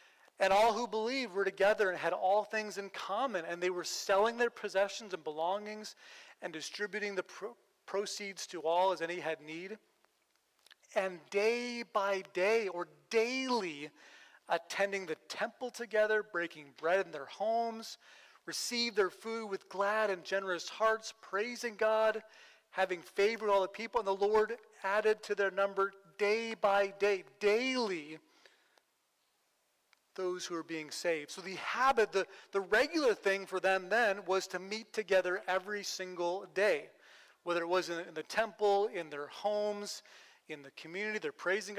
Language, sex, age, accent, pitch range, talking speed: English, male, 40-59, American, 185-220 Hz, 155 wpm